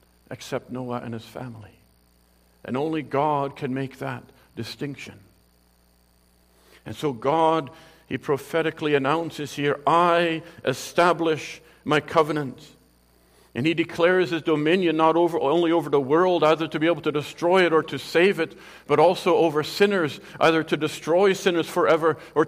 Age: 50-69